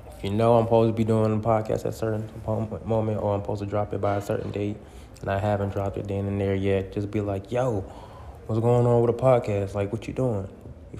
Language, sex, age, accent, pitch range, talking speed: English, male, 20-39, American, 95-110 Hz, 255 wpm